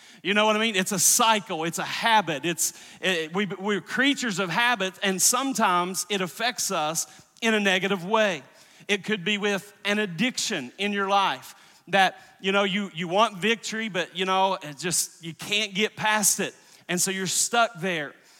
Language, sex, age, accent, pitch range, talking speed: English, male, 40-59, American, 180-220 Hz, 190 wpm